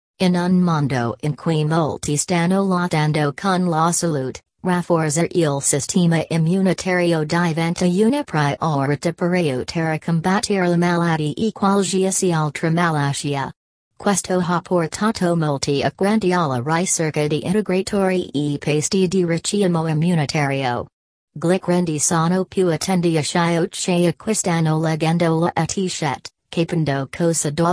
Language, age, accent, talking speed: Italian, 40-59, American, 115 wpm